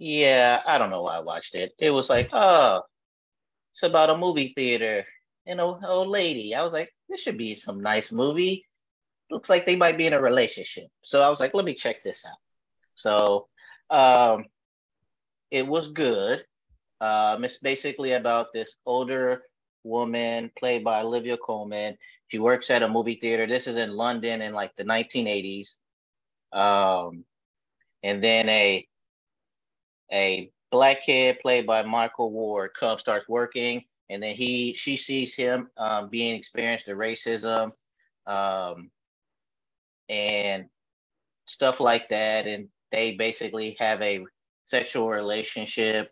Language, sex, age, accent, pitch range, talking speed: English, male, 30-49, American, 110-135 Hz, 150 wpm